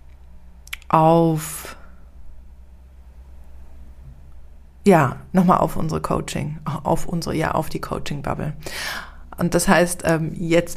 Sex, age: female, 30-49